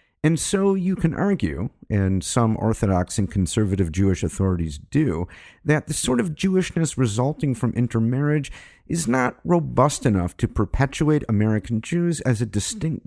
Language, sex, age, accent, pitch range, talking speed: English, male, 50-69, American, 100-145 Hz, 145 wpm